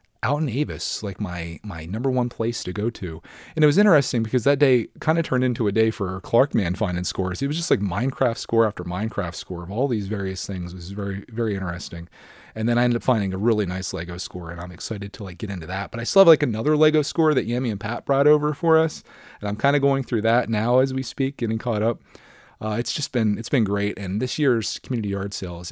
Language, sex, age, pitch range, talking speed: English, male, 30-49, 95-125 Hz, 260 wpm